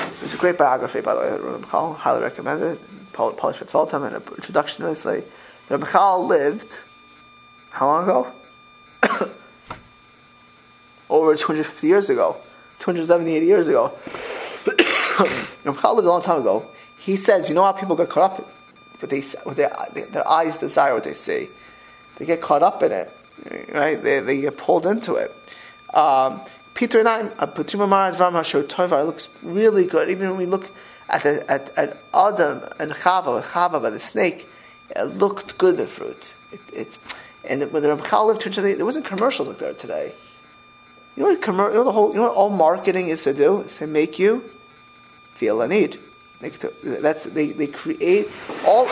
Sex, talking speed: male, 175 wpm